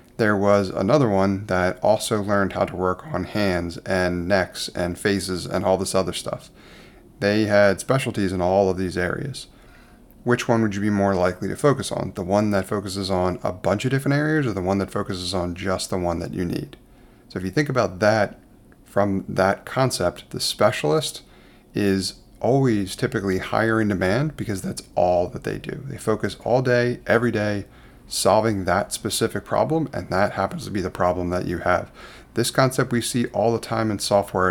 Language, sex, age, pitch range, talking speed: English, male, 30-49, 95-115 Hz, 195 wpm